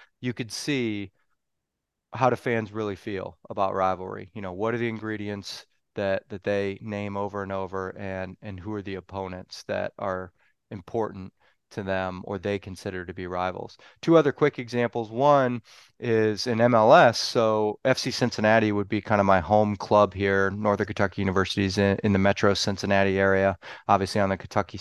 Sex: male